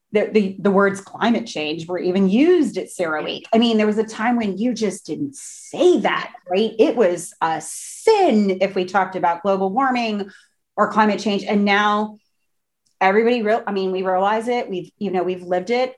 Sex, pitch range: female, 175-215 Hz